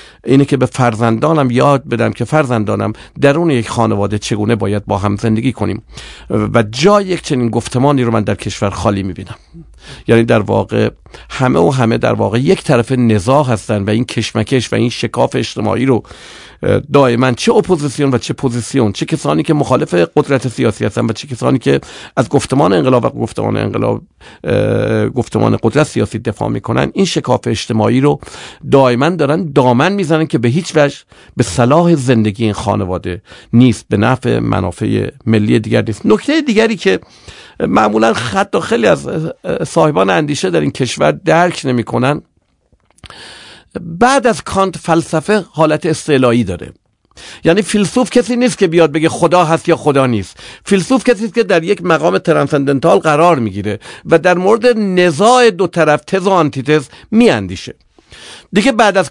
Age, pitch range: 50-69, 115-175 Hz